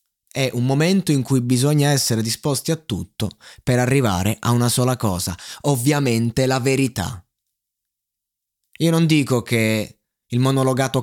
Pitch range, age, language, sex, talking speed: 100-140 Hz, 20-39, Italian, male, 135 wpm